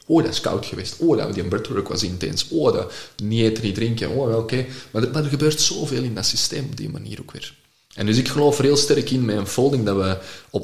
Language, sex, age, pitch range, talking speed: Dutch, male, 30-49, 100-140 Hz, 270 wpm